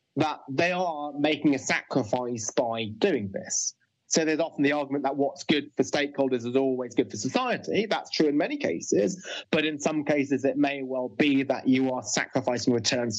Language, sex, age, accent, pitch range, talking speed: English, male, 30-49, British, 130-165 Hz, 190 wpm